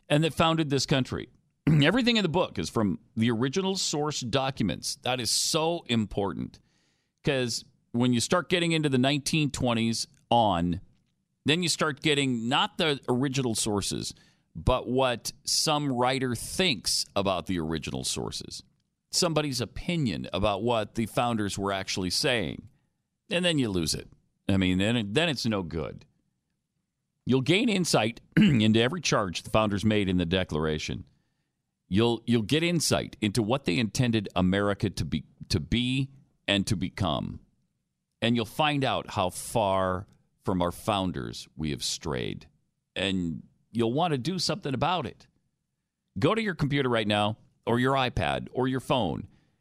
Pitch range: 105-145 Hz